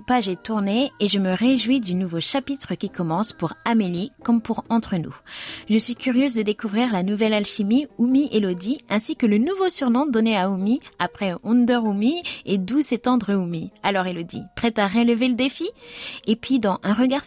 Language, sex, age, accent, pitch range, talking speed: French, female, 20-39, French, 200-270 Hz, 190 wpm